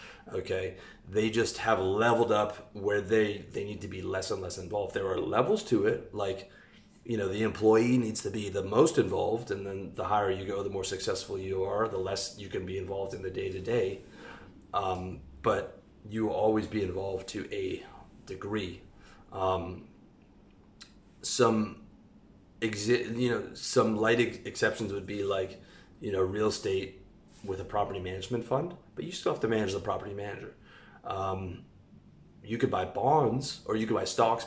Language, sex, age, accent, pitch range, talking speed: English, male, 30-49, American, 95-115 Hz, 175 wpm